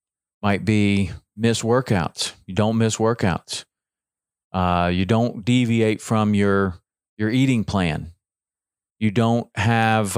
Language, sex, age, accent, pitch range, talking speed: English, male, 40-59, American, 95-120 Hz, 120 wpm